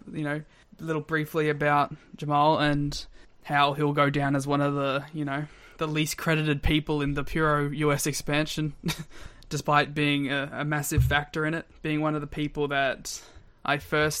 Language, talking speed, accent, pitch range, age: English, 180 wpm, Australian, 145-160 Hz, 20-39